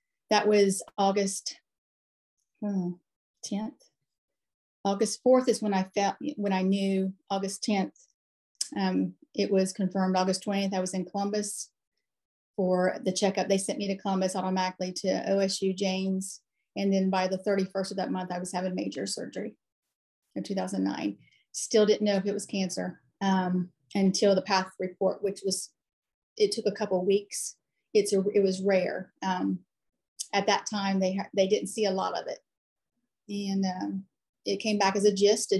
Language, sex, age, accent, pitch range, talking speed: English, female, 40-59, American, 190-210 Hz, 160 wpm